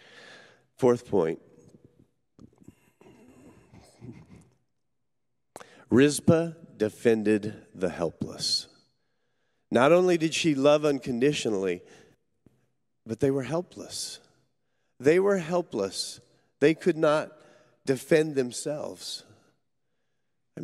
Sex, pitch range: male, 110-155 Hz